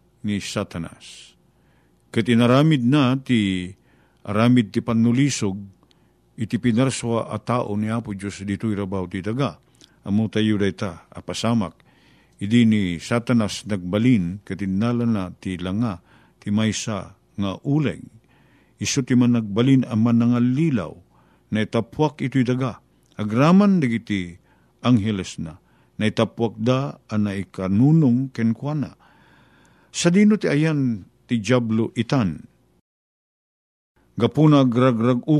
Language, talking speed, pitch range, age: Filipino, 110 wpm, 100-125 Hz, 50-69